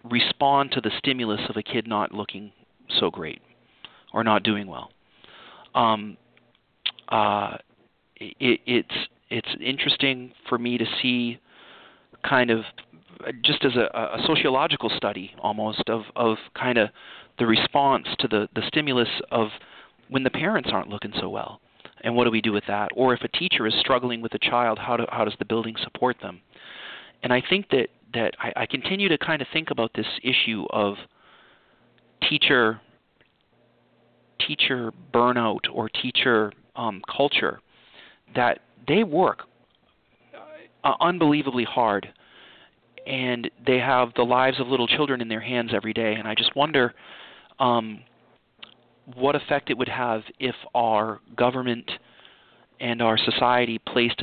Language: English